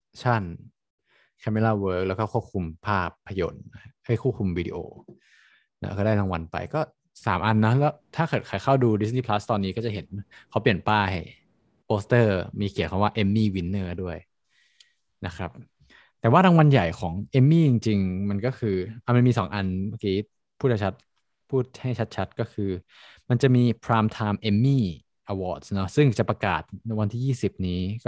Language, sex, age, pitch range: Thai, male, 20-39, 95-120 Hz